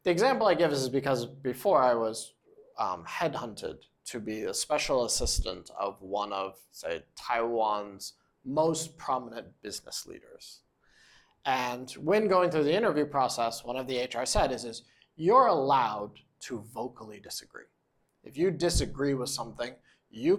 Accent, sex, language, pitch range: American, male, Chinese, 115-160 Hz